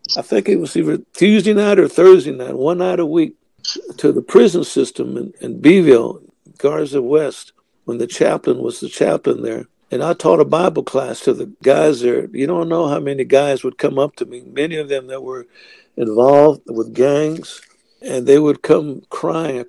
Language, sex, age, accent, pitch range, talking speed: English, male, 60-79, American, 135-170 Hz, 200 wpm